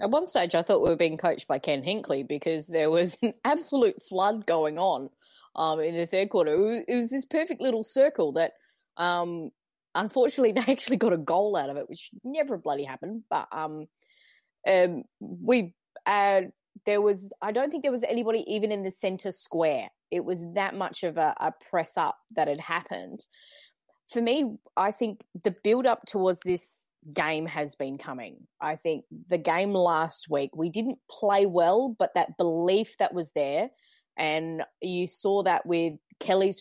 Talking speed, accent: 180 wpm, Australian